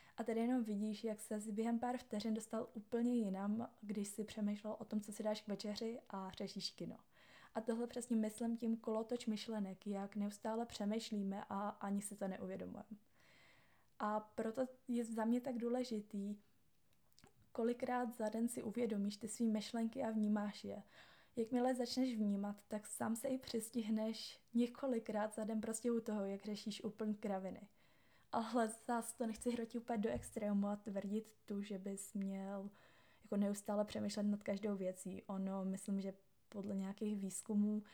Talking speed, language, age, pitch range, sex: 165 wpm, Czech, 20-39, 205-230 Hz, female